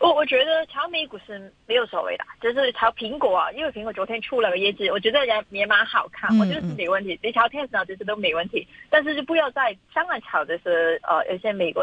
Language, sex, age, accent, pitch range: Chinese, female, 20-39, native, 200-275 Hz